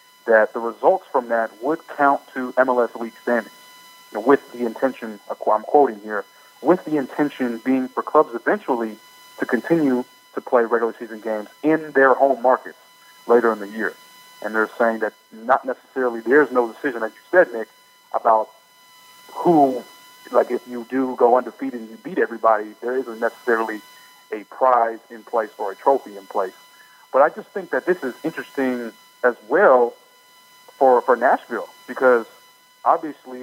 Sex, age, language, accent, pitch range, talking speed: male, 30-49, English, American, 115-165 Hz, 165 wpm